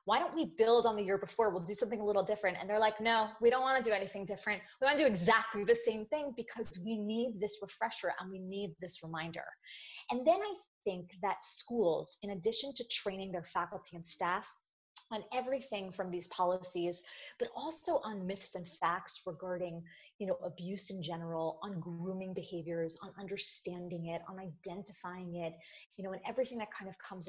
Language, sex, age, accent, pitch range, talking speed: English, female, 20-39, American, 180-235 Hz, 195 wpm